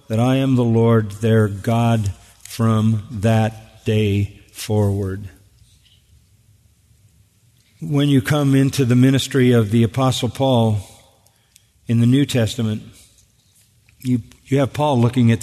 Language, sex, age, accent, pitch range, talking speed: English, male, 50-69, American, 115-145 Hz, 120 wpm